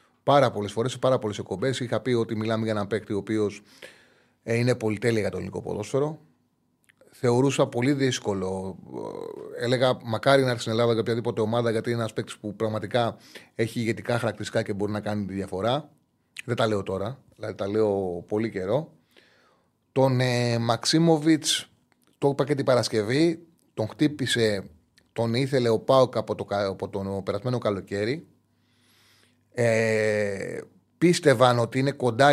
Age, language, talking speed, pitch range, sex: 30-49, Greek, 155 wpm, 105-130 Hz, male